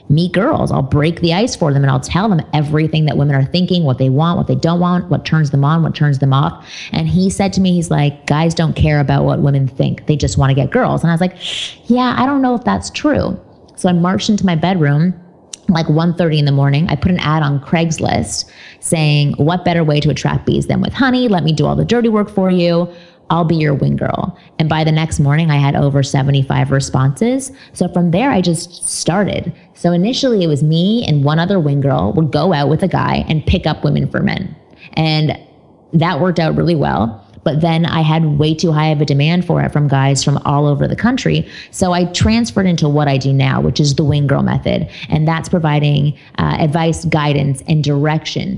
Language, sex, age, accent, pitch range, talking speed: English, female, 20-39, American, 145-175 Hz, 235 wpm